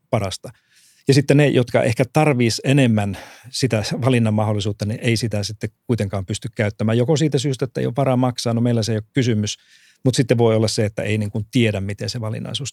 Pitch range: 105-125 Hz